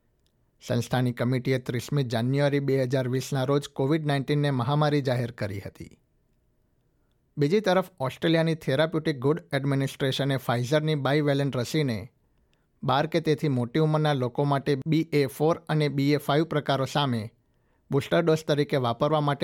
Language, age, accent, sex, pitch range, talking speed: Gujarati, 60-79, native, male, 130-150 Hz, 125 wpm